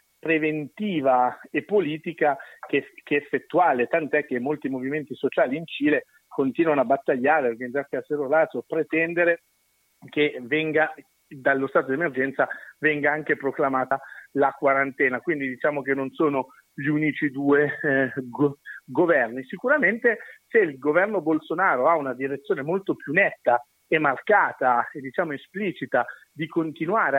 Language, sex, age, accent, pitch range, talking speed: Italian, male, 50-69, native, 135-170 Hz, 140 wpm